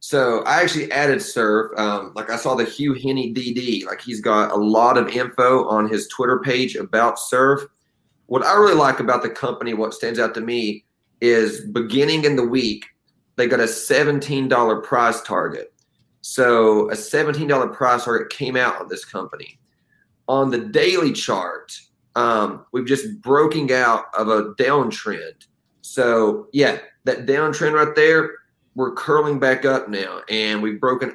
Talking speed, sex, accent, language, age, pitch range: 165 wpm, male, American, English, 30-49, 110-135 Hz